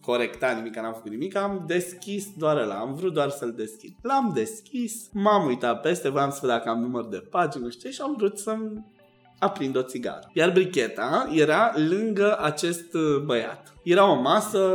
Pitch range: 140-205 Hz